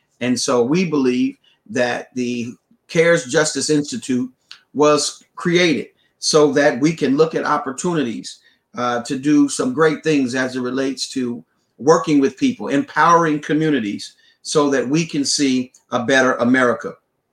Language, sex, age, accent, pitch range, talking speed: English, male, 40-59, American, 130-165 Hz, 140 wpm